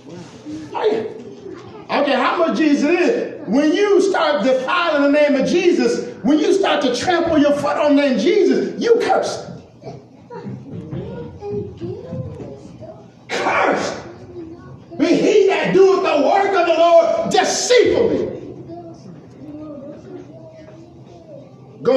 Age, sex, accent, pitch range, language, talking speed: 40-59, male, American, 260-380 Hz, English, 115 wpm